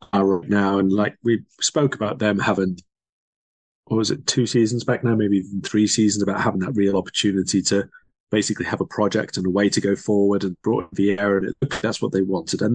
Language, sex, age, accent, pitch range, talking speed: English, male, 30-49, British, 95-120 Hz, 205 wpm